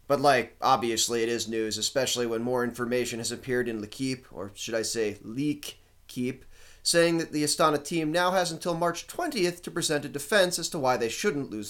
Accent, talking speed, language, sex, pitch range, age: American, 210 wpm, English, male, 120-180 Hz, 30-49